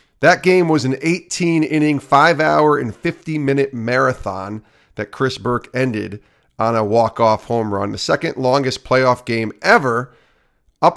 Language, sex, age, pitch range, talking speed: English, male, 40-59, 110-135 Hz, 135 wpm